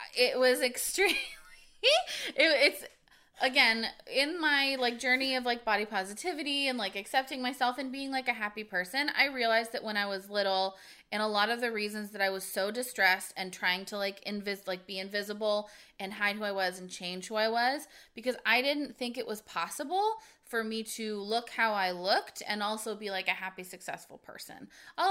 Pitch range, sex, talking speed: 195-255 Hz, female, 200 wpm